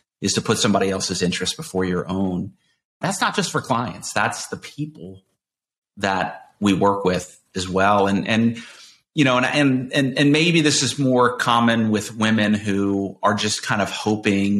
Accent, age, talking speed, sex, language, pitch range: American, 30-49, 175 wpm, male, English, 100-120 Hz